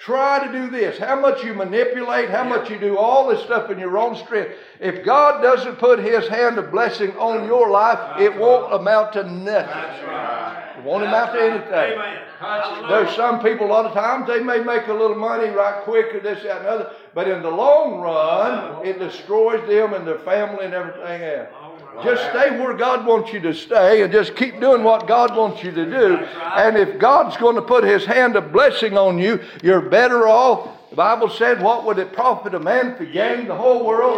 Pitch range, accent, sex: 190-255 Hz, American, male